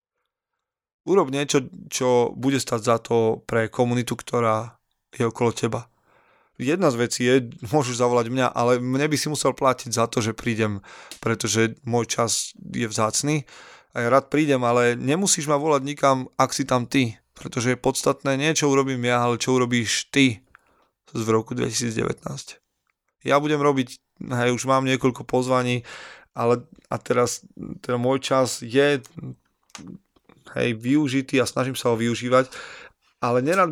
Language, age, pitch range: Slovak, 20-39, 115-135 Hz